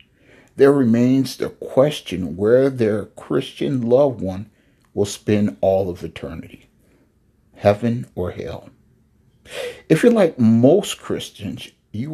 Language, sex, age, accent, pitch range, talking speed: English, male, 60-79, American, 100-140 Hz, 115 wpm